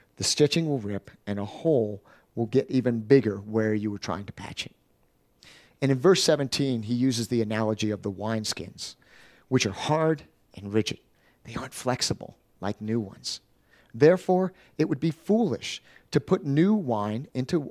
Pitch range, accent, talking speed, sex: 110-160 Hz, American, 170 wpm, male